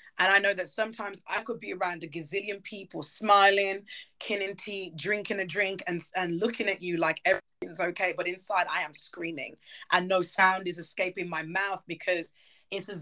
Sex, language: female, English